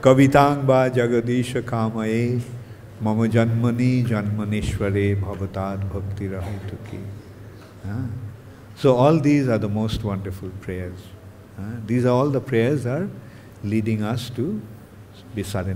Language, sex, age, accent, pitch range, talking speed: English, male, 50-69, Indian, 105-125 Hz, 60 wpm